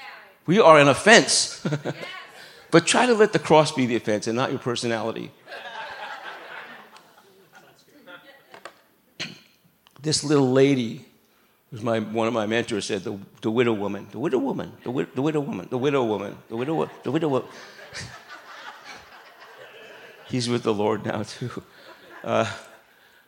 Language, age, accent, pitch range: English, 60-79, American, 115-140 Hz